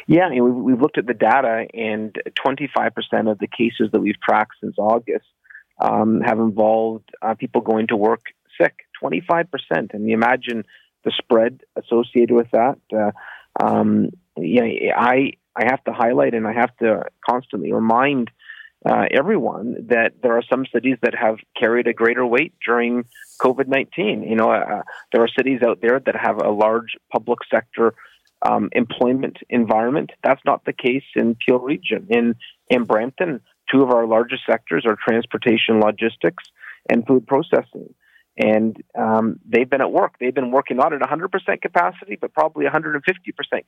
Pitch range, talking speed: 110-130 Hz, 175 wpm